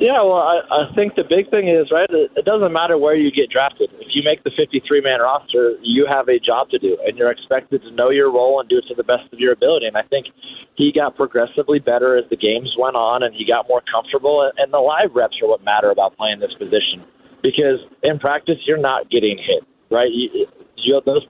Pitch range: 130-205 Hz